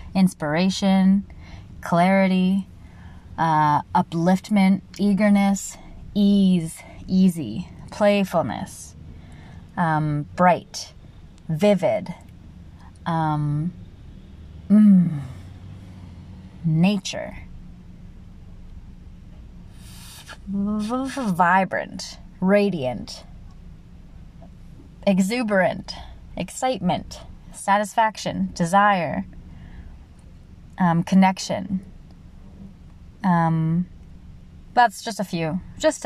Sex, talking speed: female, 45 wpm